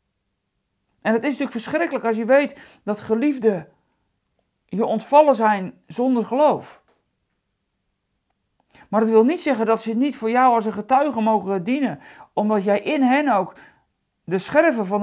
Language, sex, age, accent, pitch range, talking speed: Dutch, male, 50-69, Dutch, 215-260 Hz, 150 wpm